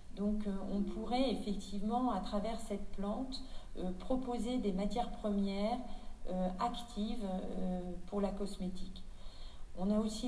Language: French